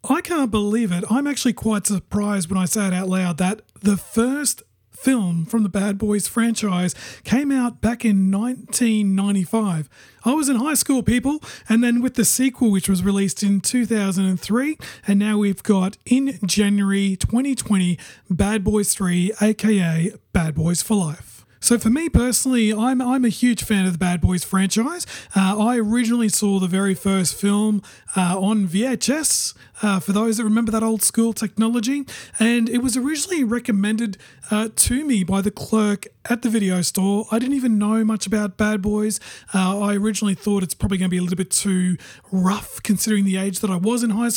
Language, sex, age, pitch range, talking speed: English, male, 30-49, 195-235 Hz, 185 wpm